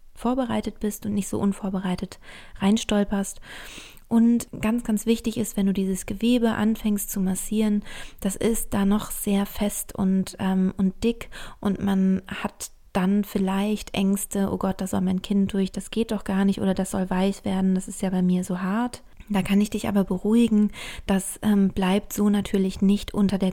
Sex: female